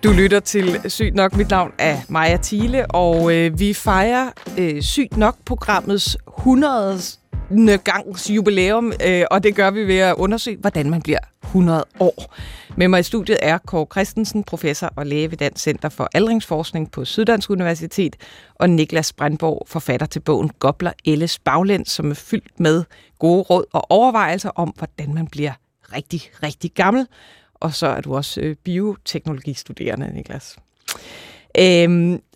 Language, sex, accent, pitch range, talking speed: Danish, female, native, 160-215 Hz, 155 wpm